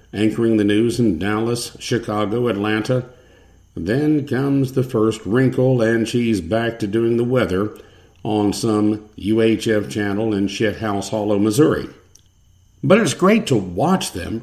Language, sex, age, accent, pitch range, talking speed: English, male, 50-69, American, 105-140 Hz, 140 wpm